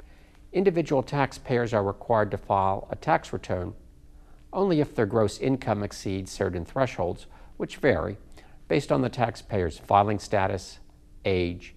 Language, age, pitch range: English, 50-69, 90-120 Hz